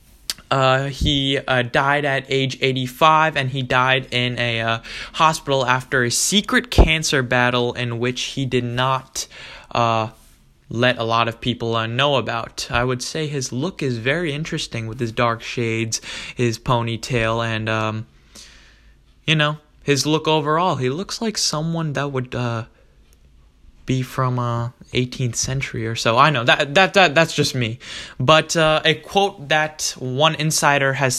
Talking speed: 160 wpm